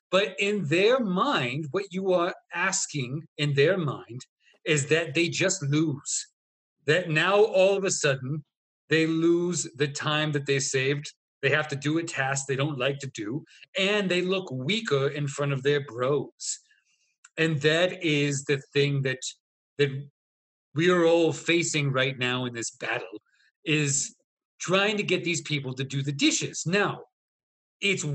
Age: 40-59